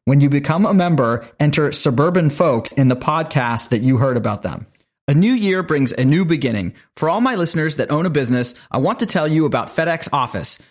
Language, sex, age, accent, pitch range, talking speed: English, male, 30-49, American, 135-185 Hz, 220 wpm